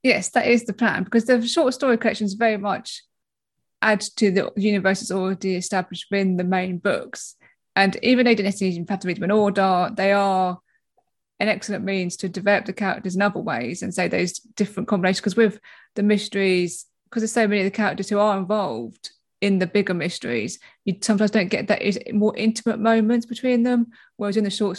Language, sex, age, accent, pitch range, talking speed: English, female, 20-39, British, 185-210 Hz, 200 wpm